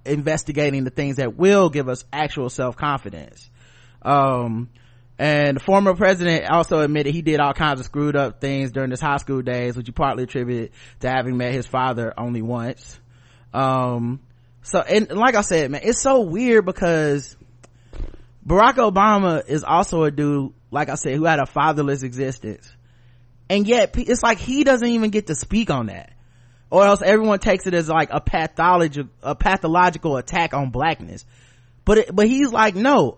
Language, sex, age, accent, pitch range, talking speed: English, male, 20-39, American, 125-195 Hz, 175 wpm